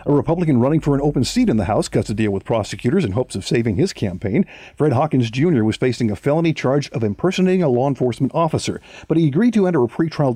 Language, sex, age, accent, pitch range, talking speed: English, male, 50-69, American, 110-150 Hz, 245 wpm